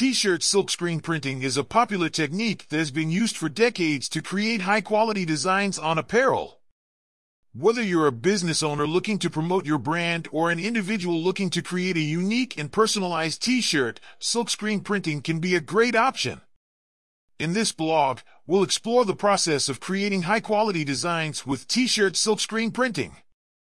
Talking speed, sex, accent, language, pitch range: 155 wpm, male, American, English, 150-215 Hz